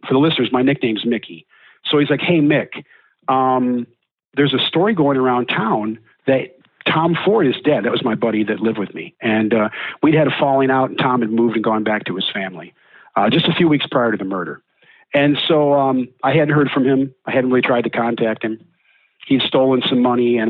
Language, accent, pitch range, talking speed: English, American, 115-145 Hz, 225 wpm